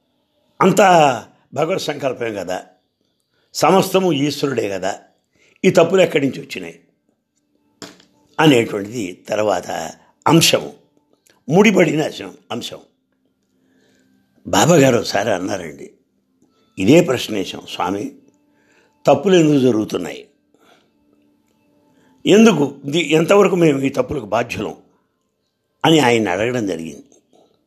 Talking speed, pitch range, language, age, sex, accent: 40 wpm, 120-170 Hz, English, 60-79, male, Indian